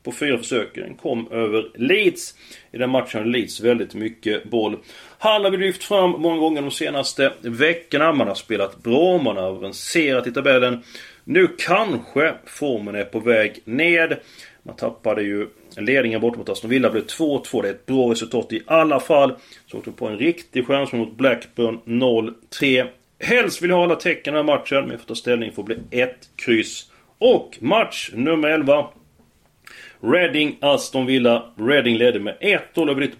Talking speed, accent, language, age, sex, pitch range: 175 wpm, native, Swedish, 30-49, male, 120-165 Hz